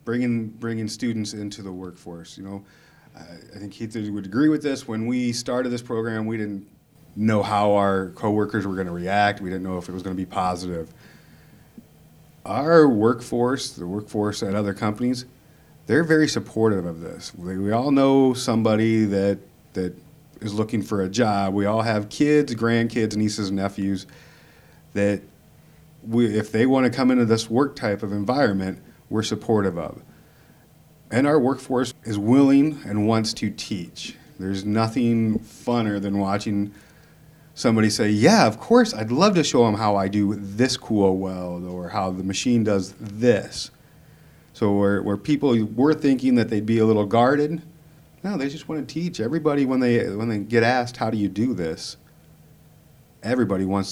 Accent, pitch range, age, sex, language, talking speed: American, 100-125 Hz, 40-59, male, English, 170 wpm